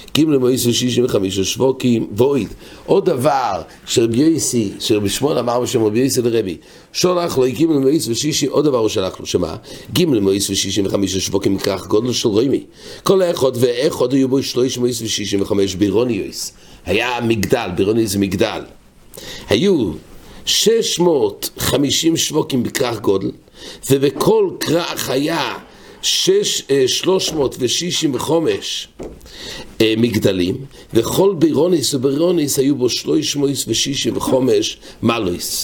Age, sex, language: 50-69, male, English